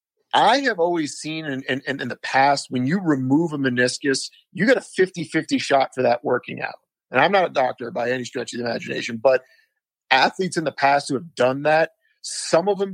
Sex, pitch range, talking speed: male, 130-170 Hz, 215 wpm